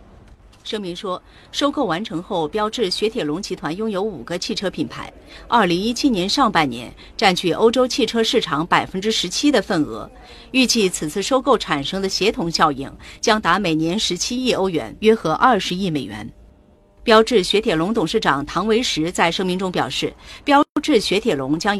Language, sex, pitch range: Chinese, female, 170-235 Hz